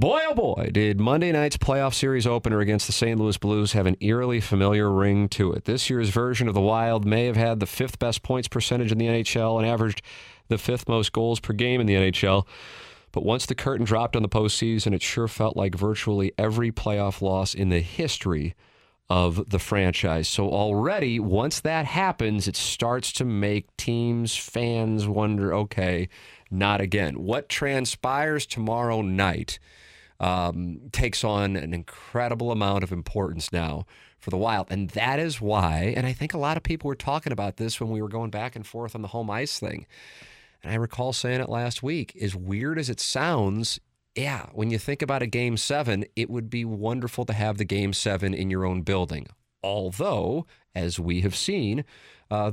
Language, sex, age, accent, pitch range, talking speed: English, male, 40-59, American, 100-120 Hz, 190 wpm